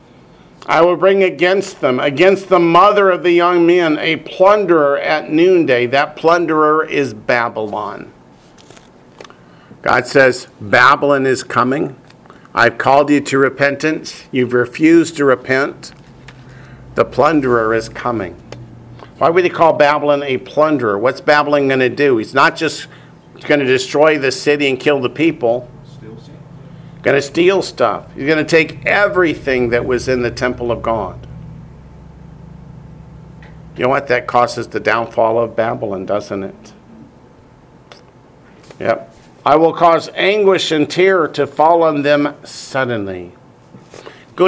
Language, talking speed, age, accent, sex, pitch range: English, 140 wpm, 50-69, American, male, 120-160 Hz